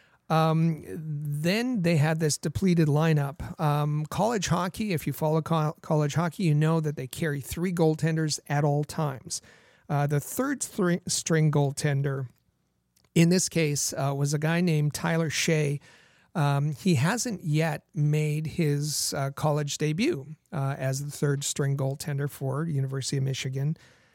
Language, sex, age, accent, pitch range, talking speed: English, male, 40-59, American, 145-170 Hz, 145 wpm